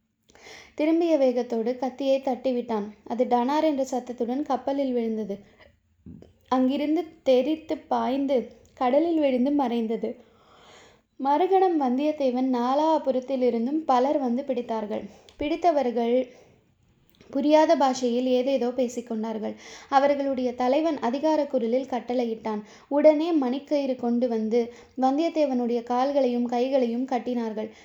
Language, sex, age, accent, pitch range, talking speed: Tamil, female, 20-39, native, 240-285 Hz, 90 wpm